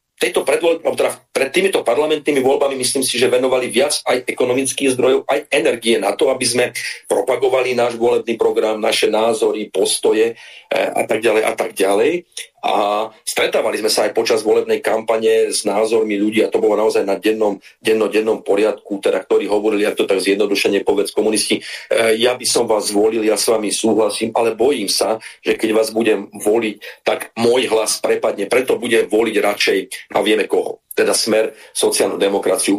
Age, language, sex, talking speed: 40-59, Slovak, male, 165 wpm